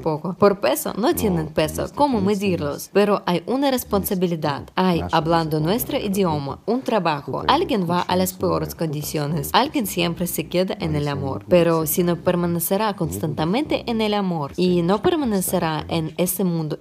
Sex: female